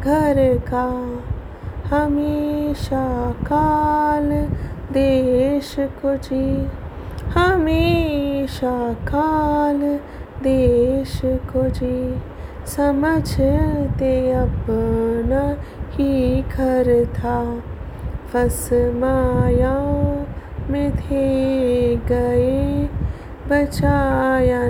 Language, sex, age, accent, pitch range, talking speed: Hindi, female, 20-39, native, 235-285 Hz, 50 wpm